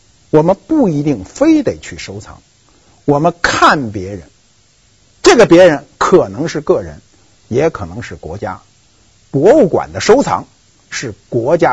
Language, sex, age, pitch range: Chinese, male, 50-69, 105-175 Hz